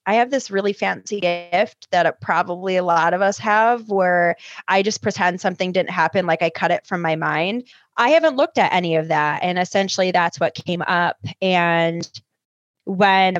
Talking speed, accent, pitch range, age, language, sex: 190 wpm, American, 170-195 Hz, 20-39, English, female